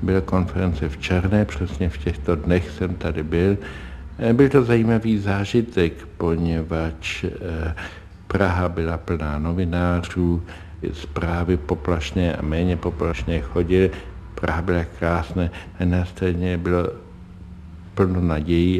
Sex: male